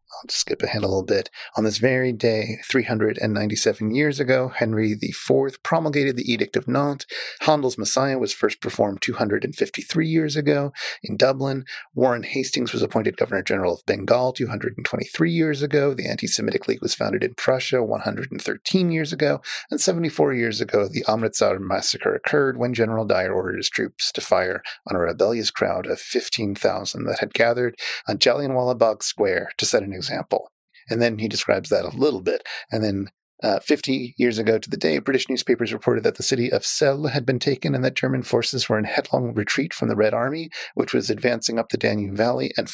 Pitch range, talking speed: 115-145 Hz, 185 wpm